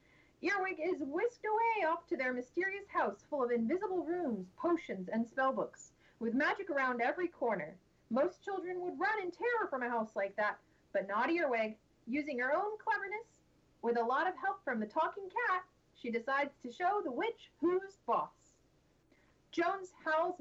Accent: American